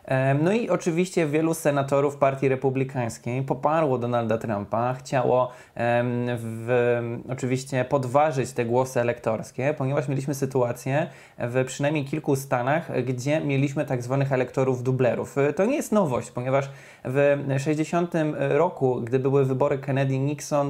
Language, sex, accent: Polish, male, native